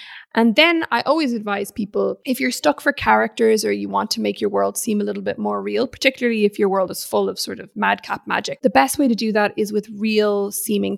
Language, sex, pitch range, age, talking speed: English, female, 200-240 Hz, 20-39, 245 wpm